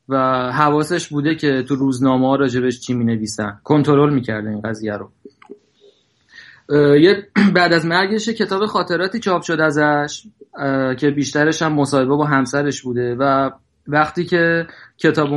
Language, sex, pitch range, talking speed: Persian, male, 135-160 Hz, 135 wpm